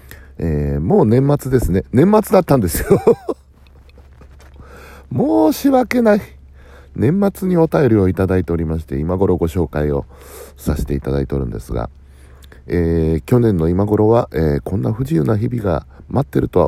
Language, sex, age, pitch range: Japanese, male, 60-79, 70-100 Hz